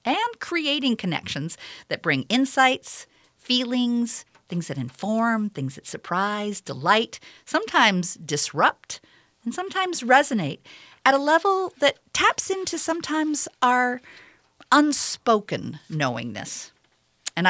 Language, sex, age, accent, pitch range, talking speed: English, female, 50-69, American, 170-255 Hz, 105 wpm